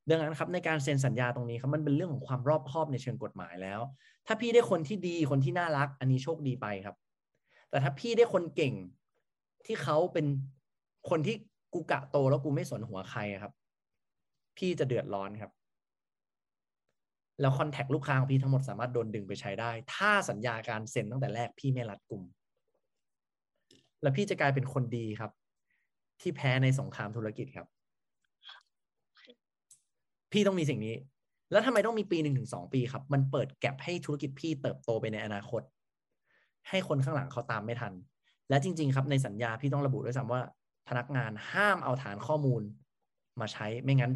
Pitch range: 115-155 Hz